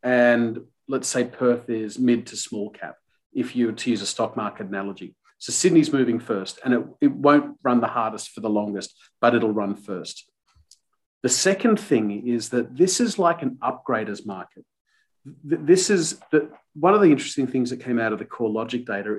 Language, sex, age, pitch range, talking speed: English, male, 40-59, 115-135 Hz, 195 wpm